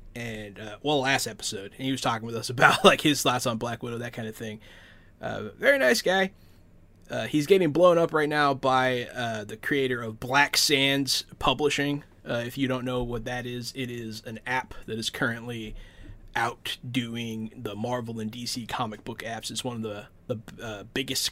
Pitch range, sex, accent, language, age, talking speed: 110-135 Hz, male, American, English, 20-39, 205 wpm